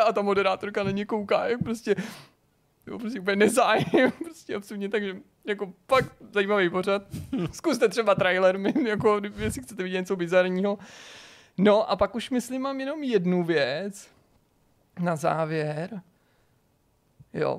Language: Czech